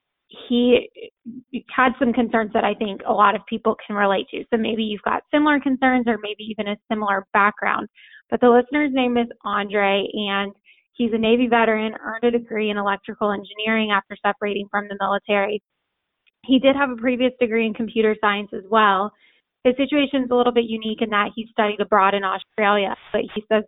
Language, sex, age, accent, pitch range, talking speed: English, female, 10-29, American, 205-240 Hz, 195 wpm